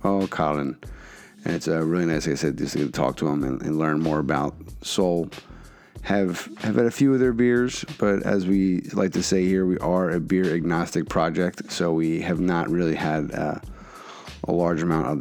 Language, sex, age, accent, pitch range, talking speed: English, male, 30-49, American, 75-90 Hz, 210 wpm